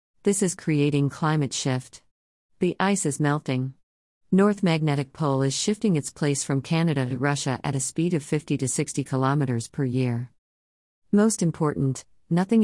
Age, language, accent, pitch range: 50-69, English, American, 130-155 Hz